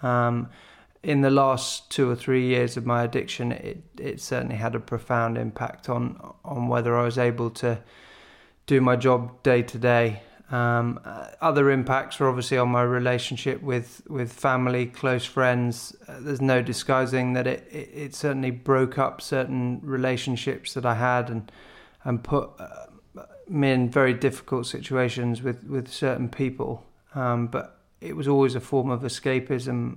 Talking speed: 165 wpm